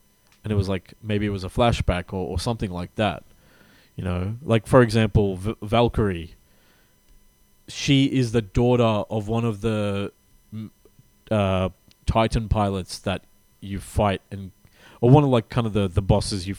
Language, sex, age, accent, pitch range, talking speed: English, male, 20-39, Australian, 95-115 Hz, 165 wpm